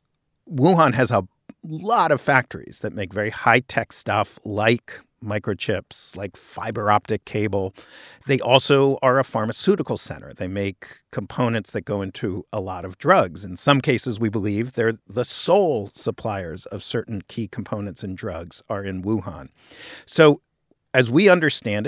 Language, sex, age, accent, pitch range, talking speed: English, male, 50-69, American, 105-130 Hz, 150 wpm